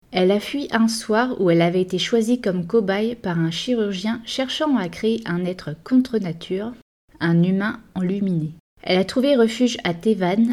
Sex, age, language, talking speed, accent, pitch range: female, 30-49, French, 175 wpm, French, 170-225 Hz